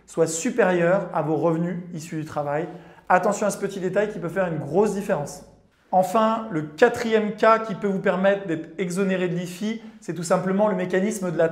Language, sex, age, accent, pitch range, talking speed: French, male, 20-39, French, 175-210 Hz, 200 wpm